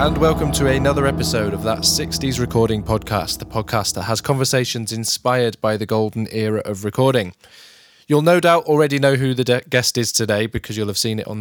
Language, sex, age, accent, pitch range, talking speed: English, male, 20-39, British, 105-125 Hz, 200 wpm